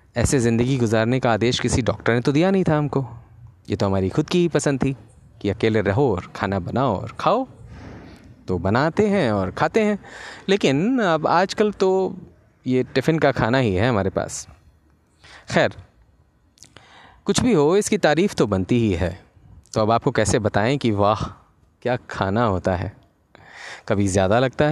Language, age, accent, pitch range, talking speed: Hindi, 30-49, native, 105-145 Hz, 170 wpm